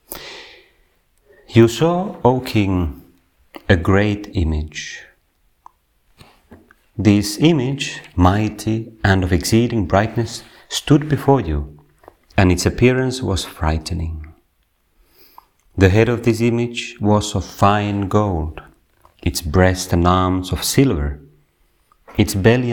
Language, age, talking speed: Finnish, 40-59, 105 wpm